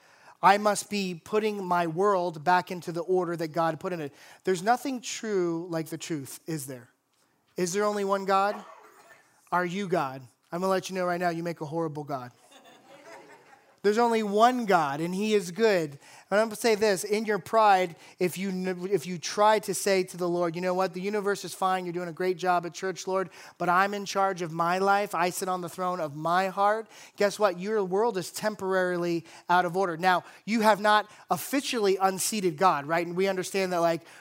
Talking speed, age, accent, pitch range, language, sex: 215 wpm, 30-49, American, 170-200 Hz, English, male